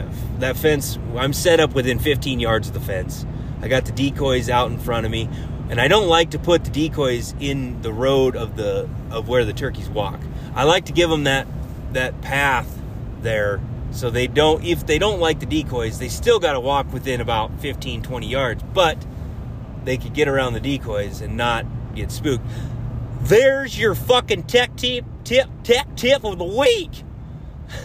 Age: 30-49